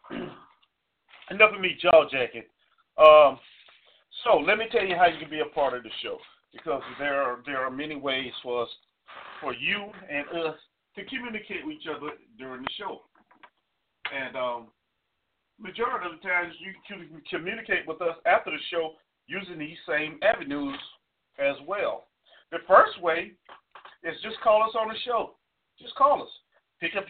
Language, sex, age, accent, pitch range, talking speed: English, male, 40-59, American, 155-210 Hz, 170 wpm